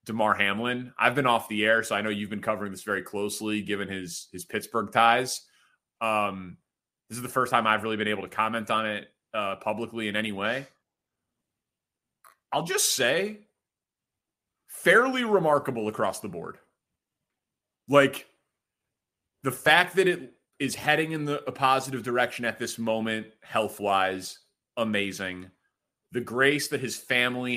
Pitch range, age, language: 110-150 Hz, 30-49, English